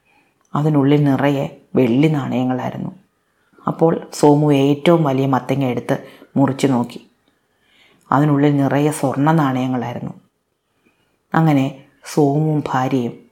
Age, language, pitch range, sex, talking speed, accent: 30-49, Malayalam, 135-150 Hz, female, 85 wpm, native